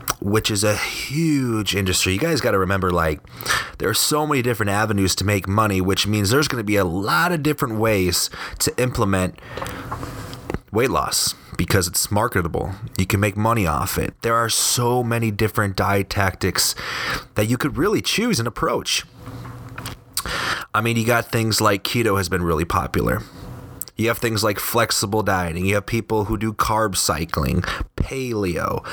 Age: 30-49